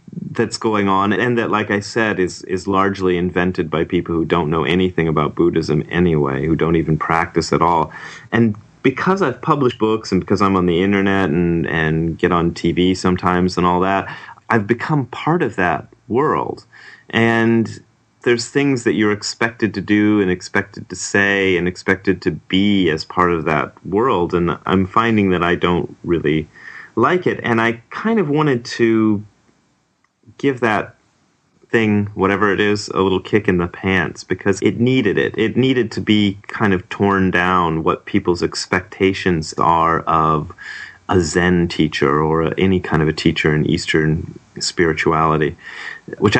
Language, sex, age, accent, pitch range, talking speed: English, male, 30-49, American, 85-105 Hz, 170 wpm